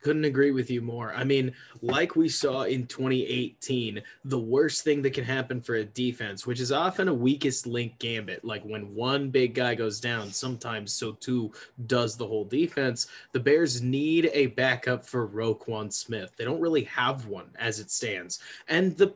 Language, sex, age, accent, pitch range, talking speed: English, male, 20-39, American, 120-160 Hz, 190 wpm